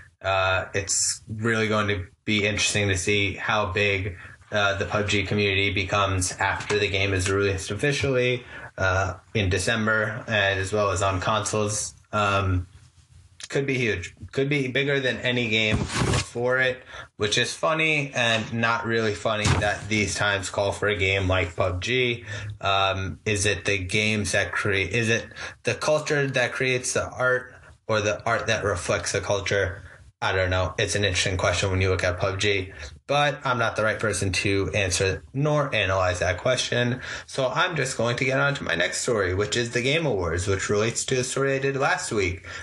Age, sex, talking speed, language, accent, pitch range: 20-39, male, 185 wpm, English, American, 95-120 Hz